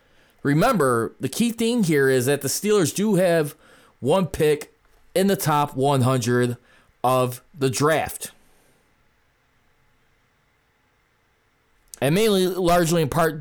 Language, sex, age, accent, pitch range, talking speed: English, male, 20-39, American, 135-170 Hz, 110 wpm